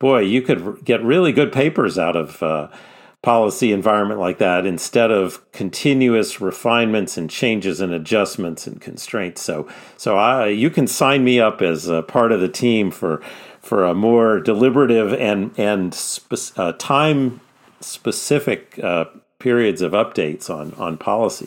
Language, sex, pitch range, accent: English, male, 105-135 Hz, American